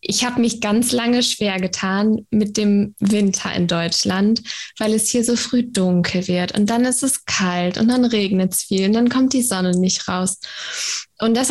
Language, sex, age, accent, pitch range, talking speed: German, female, 20-39, German, 195-230 Hz, 200 wpm